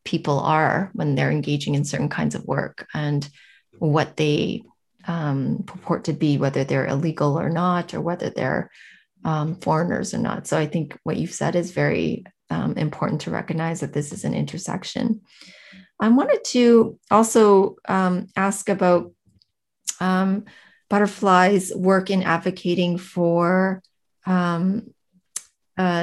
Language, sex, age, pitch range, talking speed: English, female, 30-49, 170-195 Hz, 145 wpm